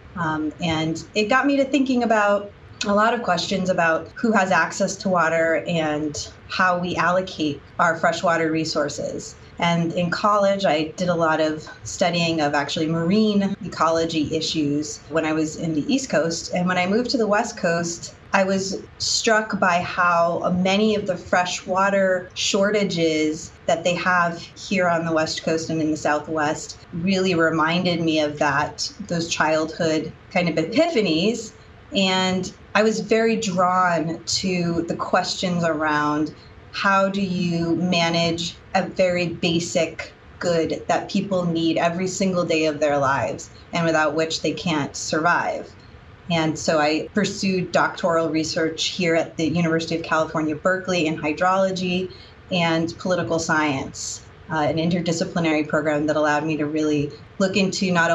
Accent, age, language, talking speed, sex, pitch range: American, 30-49, English, 155 wpm, female, 155-185 Hz